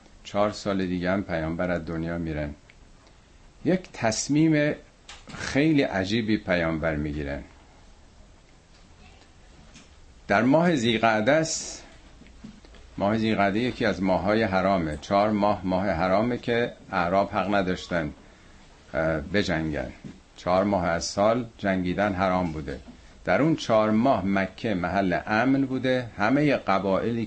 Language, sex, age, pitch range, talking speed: Persian, male, 50-69, 85-115 Hz, 110 wpm